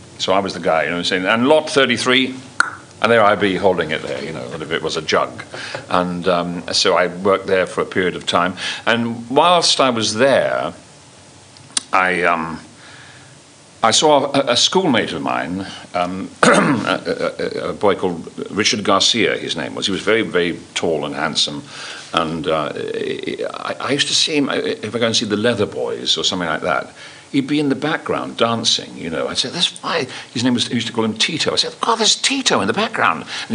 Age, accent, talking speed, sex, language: 50-69, British, 215 wpm, male, English